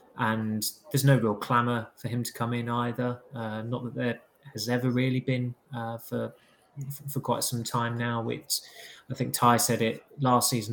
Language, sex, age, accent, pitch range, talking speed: English, male, 20-39, British, 115-125 Hz, 190 wpm